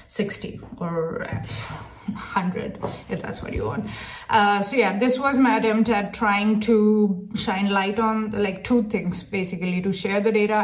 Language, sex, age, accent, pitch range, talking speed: English, female, 20-39, Indian, 190-220 Hz, 165 wpm